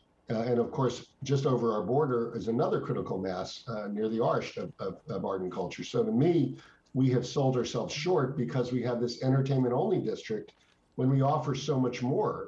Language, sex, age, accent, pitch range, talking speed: English, male, 50-69, American, 115-135 Hz, 195 wpm